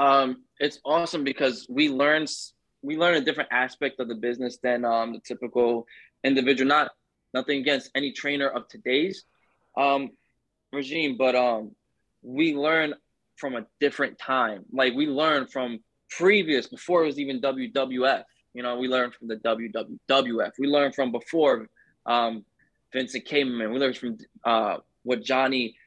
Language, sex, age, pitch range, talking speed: English, male, 20-39, 120-140 Hz, 155 wpm